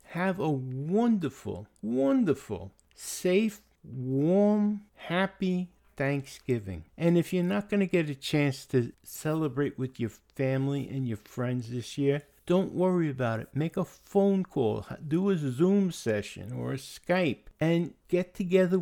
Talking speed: 145 wpm